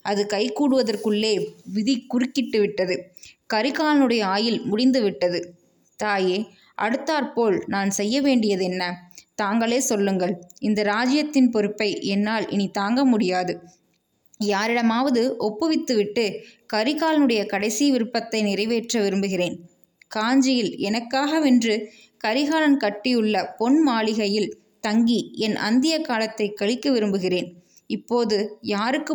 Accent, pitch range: native, 200-255 Hz